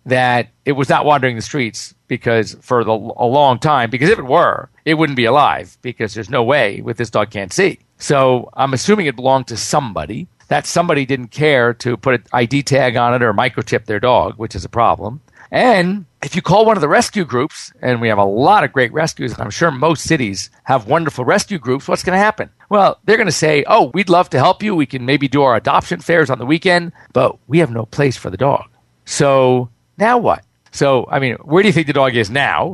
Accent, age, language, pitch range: American, 50-69, English, 120-160 Hz